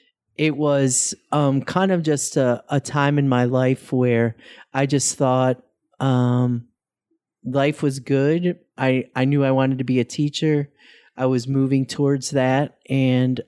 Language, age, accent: English, 30-49, American